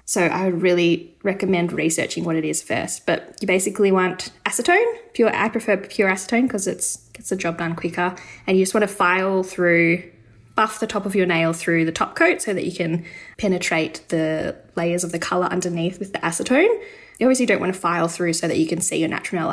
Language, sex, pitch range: English, female, 170-230 Hz